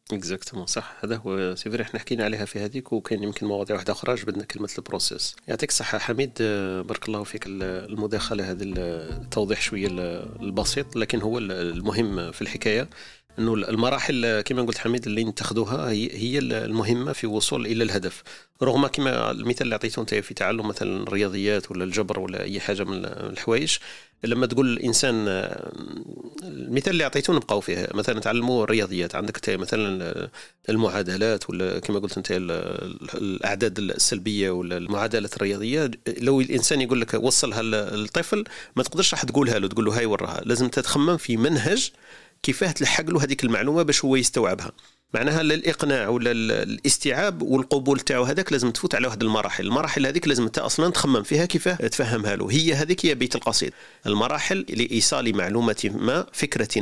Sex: male